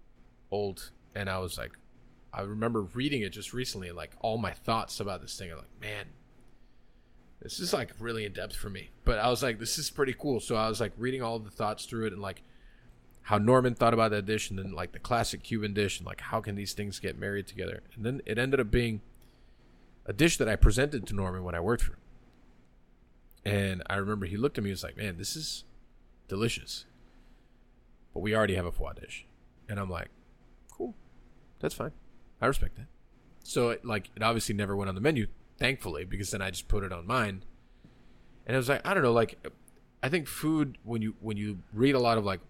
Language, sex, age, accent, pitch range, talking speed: English, male, 30-49, American, 95-115 Hz, 220 wpm